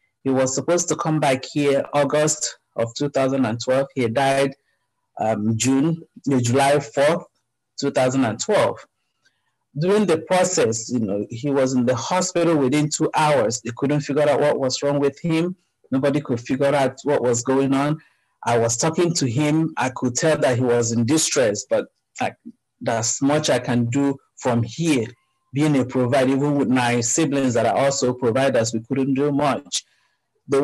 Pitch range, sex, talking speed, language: 125-150 Hz, male, 165 wpm, English